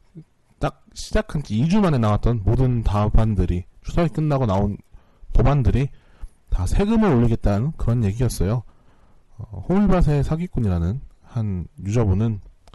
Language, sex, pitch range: Korean, male, 95-130 Hz